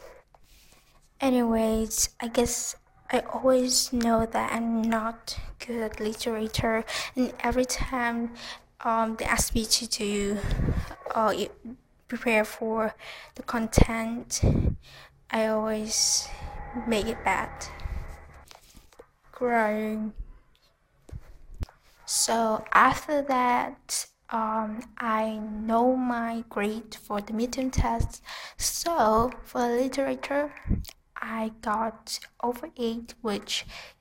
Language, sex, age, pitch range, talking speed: English, female, 10-29, 220-250 Hz, 90 wpm